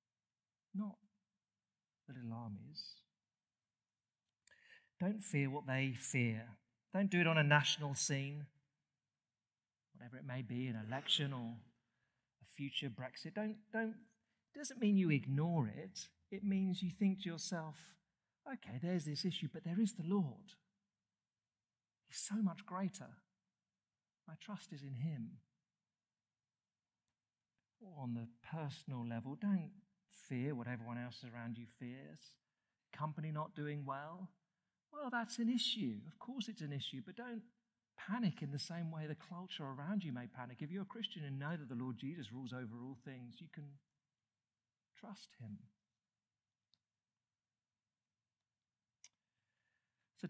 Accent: British